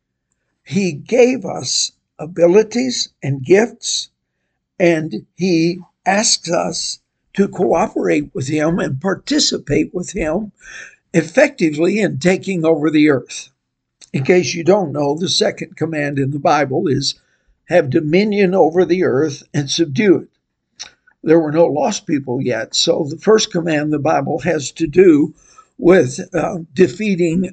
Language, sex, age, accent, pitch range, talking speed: English, male, 60-79, American, 155-195 Hz, 135 wpm